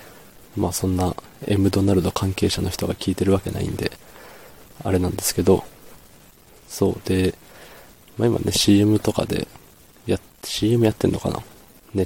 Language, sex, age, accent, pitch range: Japanese, male, 20-39, native, 95-110 Hz